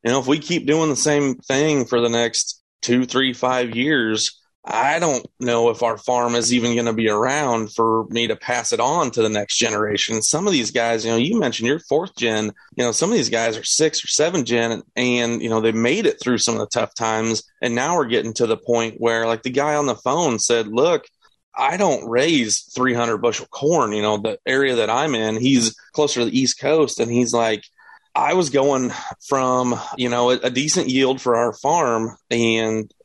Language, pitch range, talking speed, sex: English, 115-130 Hz, 225 wpm, male